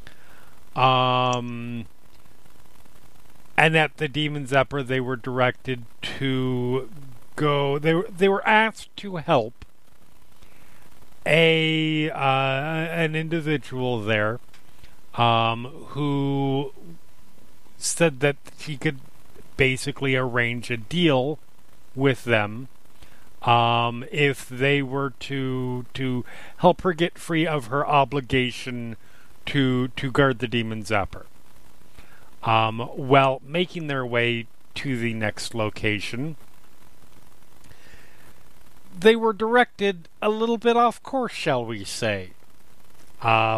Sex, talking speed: male, 105 wpm